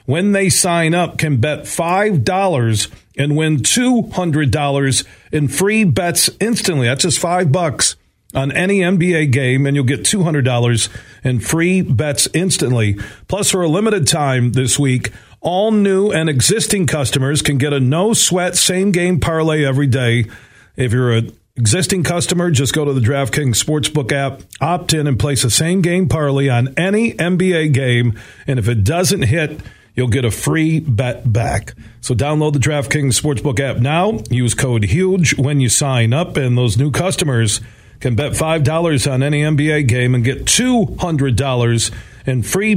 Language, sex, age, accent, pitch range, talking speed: English, male, 40-59, American, 125-170 Hz, 160 wpm